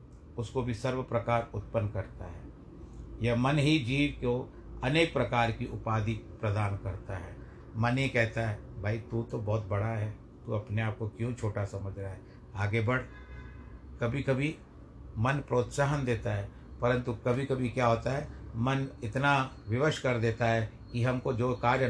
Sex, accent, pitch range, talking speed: male, native, 105-135 Hz, 170 wpm